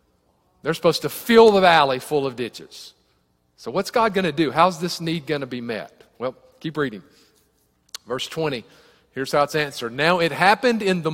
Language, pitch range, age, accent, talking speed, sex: English, 160-220 Hz, 40-59, American, 195 wpm, male